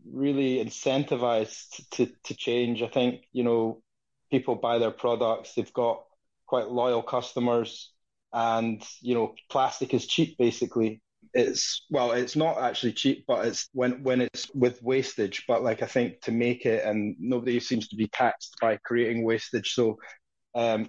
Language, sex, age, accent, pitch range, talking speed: English, male, 20-39, British, 115-130 Hz, 160 wpm